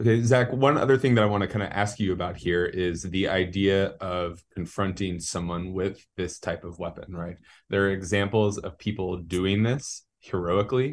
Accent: American